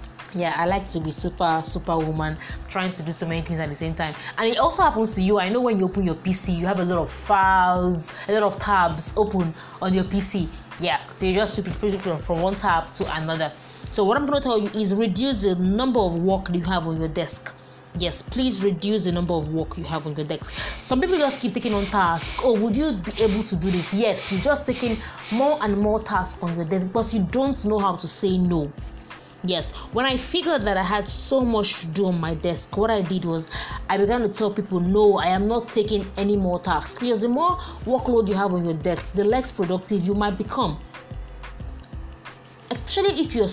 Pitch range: 170-215 Hz